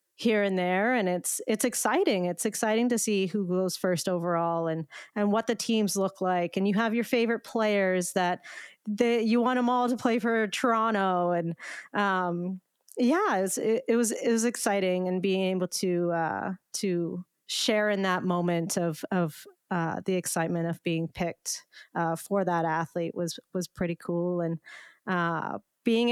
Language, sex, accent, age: English, female, American, 30-49